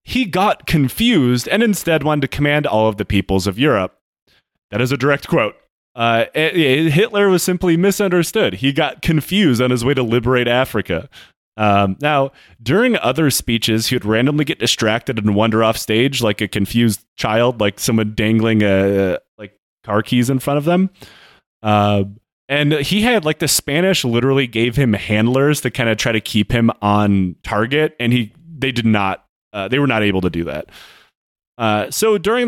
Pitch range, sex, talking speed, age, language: 105-150 Hz, male, 185 wpm, 30-49, English